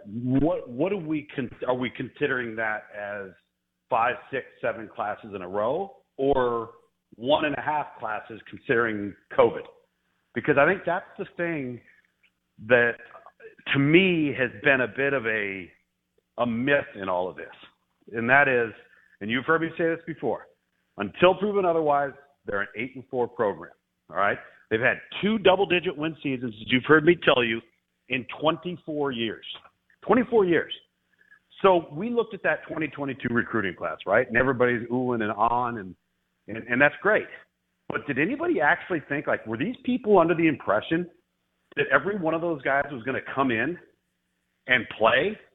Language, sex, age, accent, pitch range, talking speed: English, male, 50-69, American, 120-180 Hz, 160 wpm